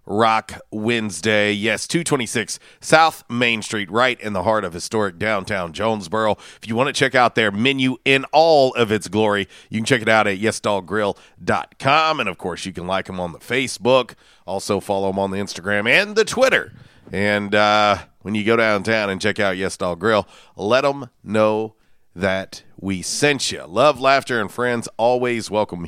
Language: English